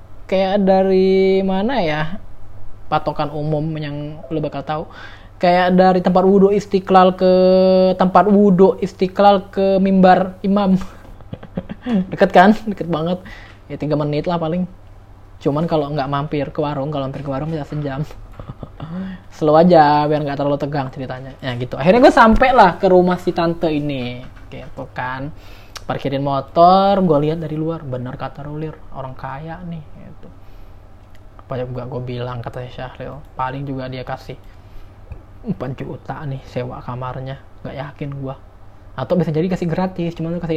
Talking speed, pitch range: 150 wpm, 130-180 Hz